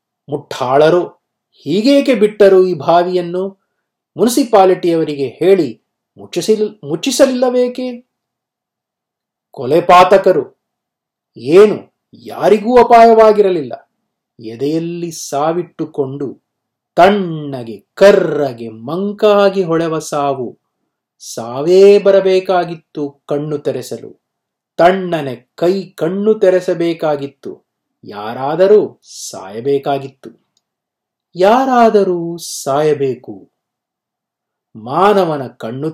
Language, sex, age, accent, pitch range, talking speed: Kannada, male, 30-49, native, 145-200 Hz, 55 wpm